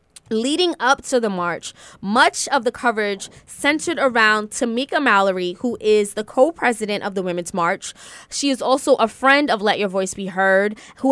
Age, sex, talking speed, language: 20-39, female, 180 wpm, English